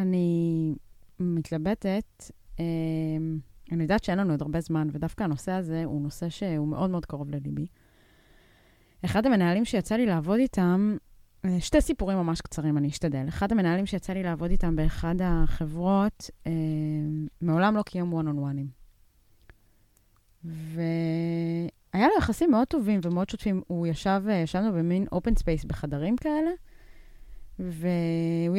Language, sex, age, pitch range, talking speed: Hebrew, female, 20-39, 155-215 Hz, 125 wpm